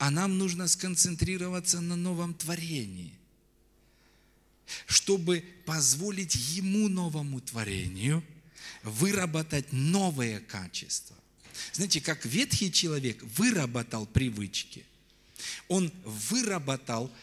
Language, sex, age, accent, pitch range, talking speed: Russian, male, 40-59, native, 125-185 Hz, 80 wpm